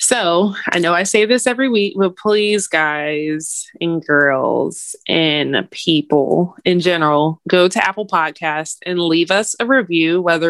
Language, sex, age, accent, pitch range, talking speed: English, female, 20-39, American, 165-200 Hz, 155 wpm